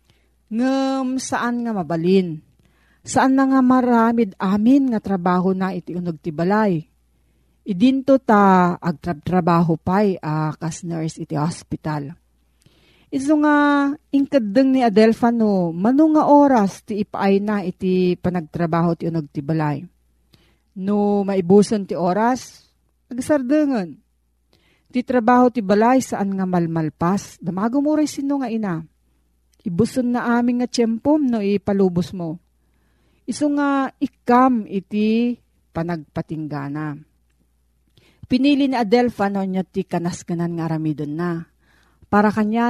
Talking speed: 115 wpm